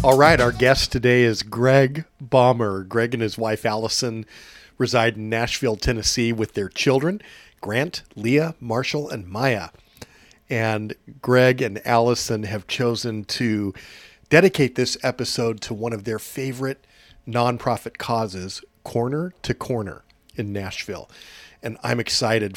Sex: male